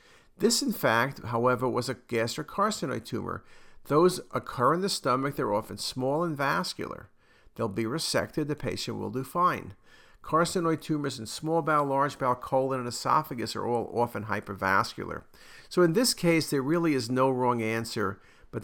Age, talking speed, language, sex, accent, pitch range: 50-69, 165 wpm, English, male, American, 110-155 Hz